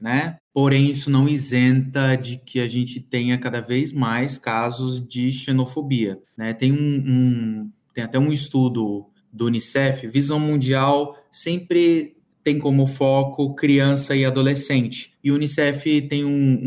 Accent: Brazilian